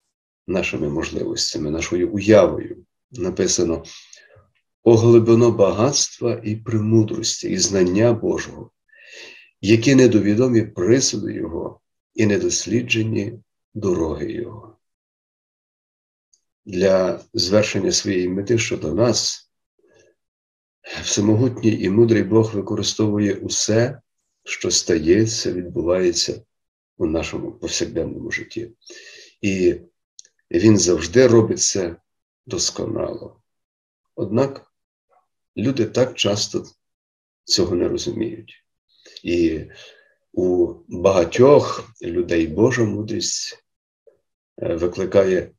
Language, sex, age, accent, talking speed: Ukrainian, male, 50-69, native, 75 wpm